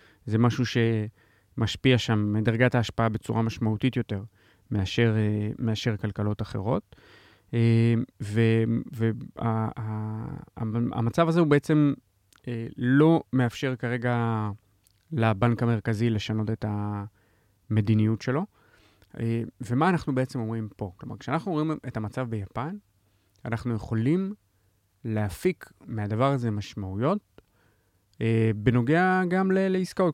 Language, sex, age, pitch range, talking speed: Hebrew, male, 30-49, 105-135 Hz, 100 wpm